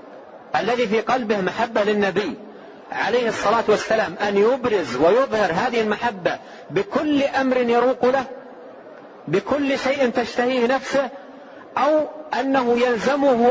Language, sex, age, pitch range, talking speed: Arabic, male, 40-59, 205-260 Hz, 105 wpm